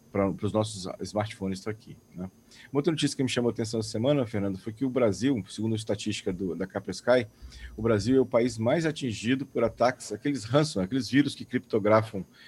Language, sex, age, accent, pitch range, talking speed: Portuguese, male, 40-59, Brazilian, 100-135 Hz, 210 wpm